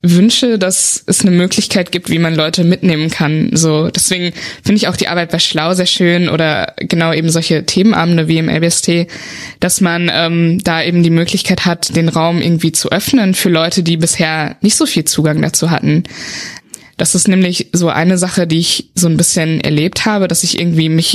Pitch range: 160-185 Hz